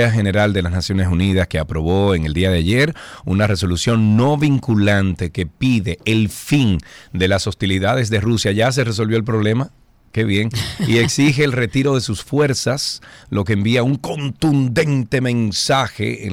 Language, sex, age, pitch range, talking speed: Spanish, male, 40-59, 90-115 Hz, 170 wpm